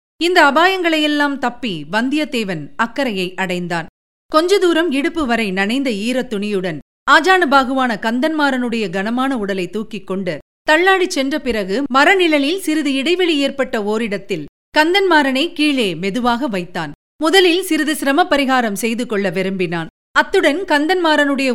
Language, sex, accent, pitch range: Tamil, female, native, 210-295 Hz